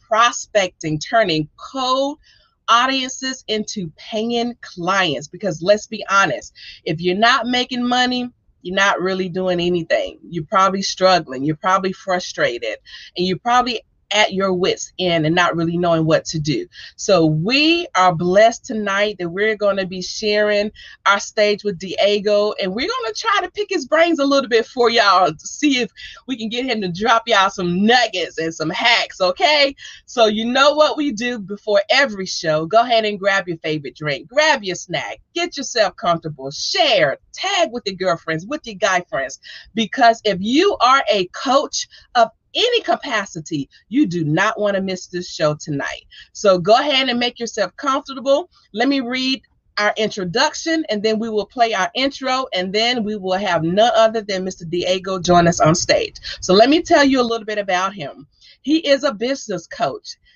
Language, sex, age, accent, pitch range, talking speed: English, female, 30-49, American, 185-260 Hz, 180 wpm